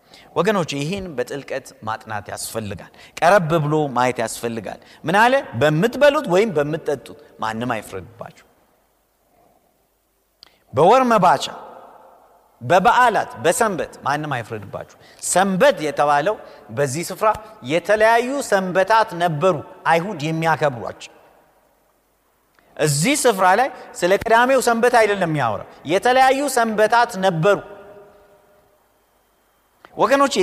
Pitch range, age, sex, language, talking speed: 150-230 Hz, 50-69, male, Amharic, 80 wpm